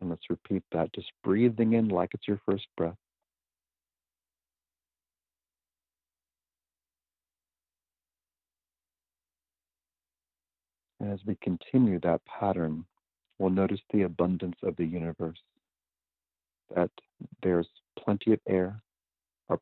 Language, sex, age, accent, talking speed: English, male, 50-69, American, 95 wpm